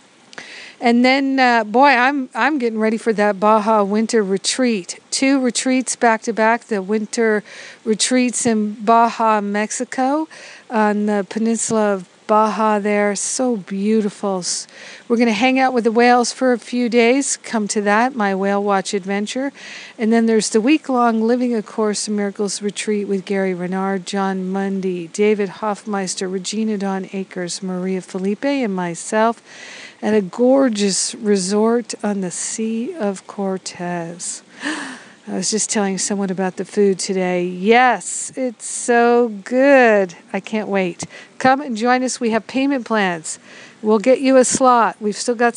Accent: American